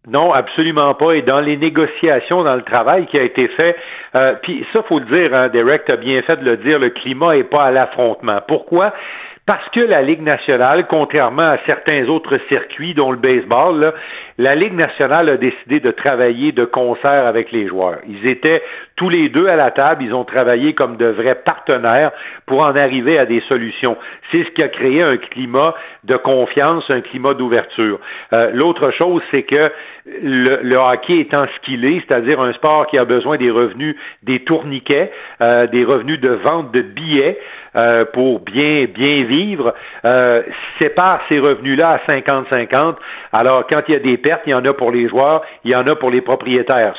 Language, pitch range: French, 125-160 Hz